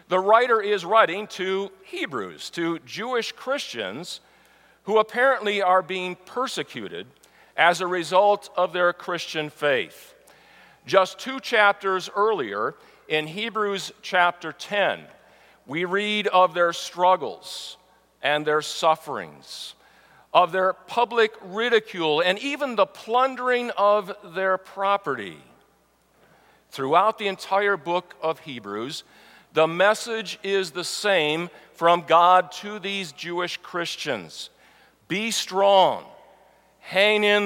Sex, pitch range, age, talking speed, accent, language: male, 160-205 Hz, 50-69, 110 wpm, American, English